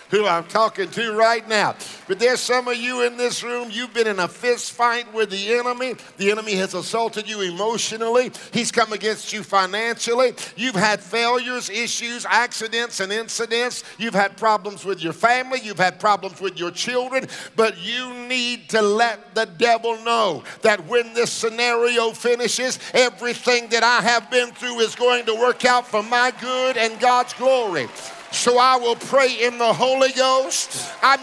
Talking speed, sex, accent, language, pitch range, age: 175 wpm, male, American, English, 220-250 Hz, 50-69